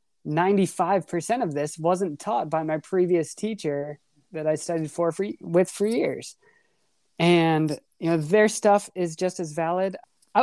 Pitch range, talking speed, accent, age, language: 160-185 Hz, 150 wpm, American, 20-39, English